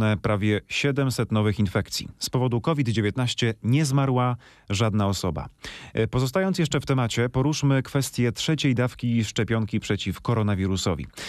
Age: 30-49